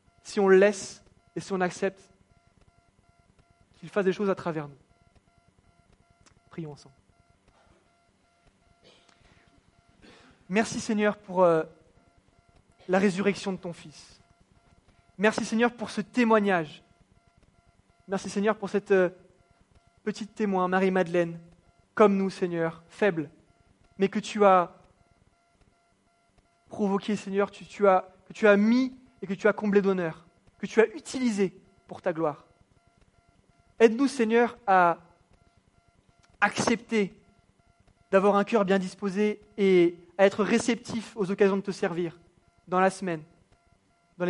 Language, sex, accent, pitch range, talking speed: English, male, French, 165-210 Hz, 125 wpm